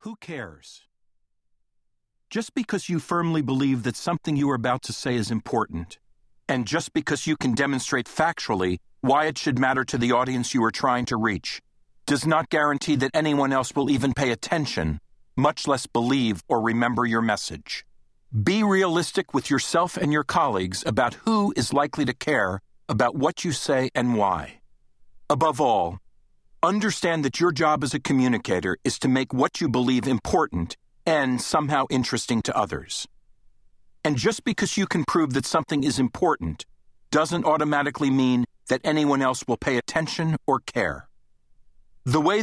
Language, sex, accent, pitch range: English, male, American, 120-155 Hz